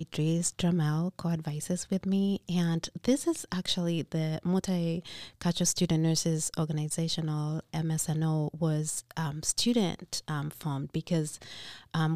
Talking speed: 115 wpm